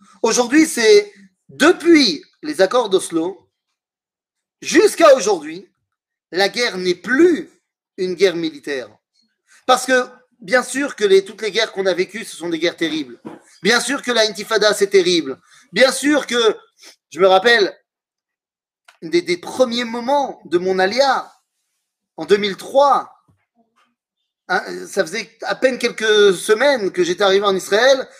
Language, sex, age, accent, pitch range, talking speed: French, male, 30-49, French, 205-315 Hz, 135 wpm